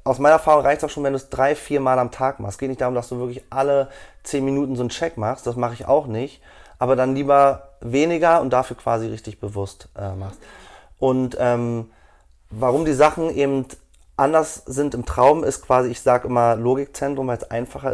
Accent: German